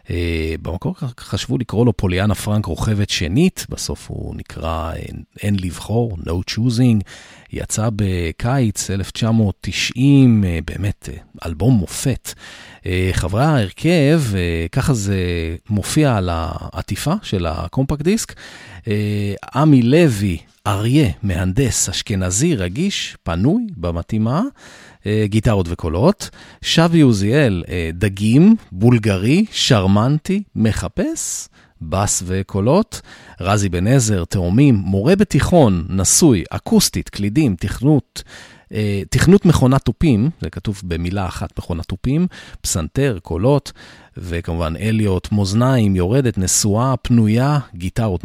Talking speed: 105 wpm